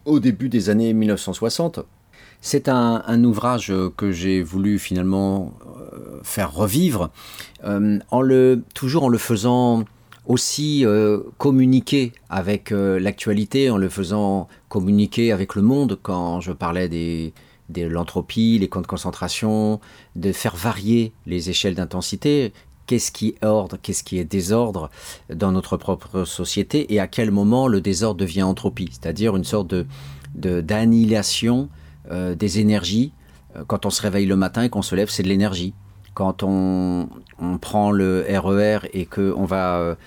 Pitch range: 90-110 Hz